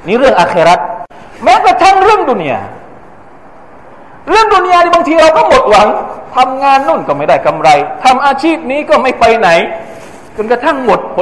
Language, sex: Thai, male